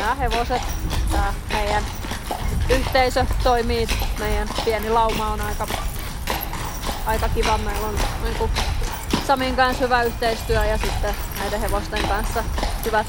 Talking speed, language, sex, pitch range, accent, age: 115 wpm, Finnish, female, 225-245 Hz, native, 20-39